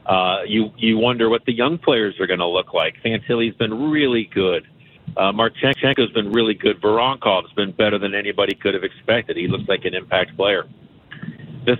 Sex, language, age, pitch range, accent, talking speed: male, English, 50-69, 105-140 Hz, American, 195 wpm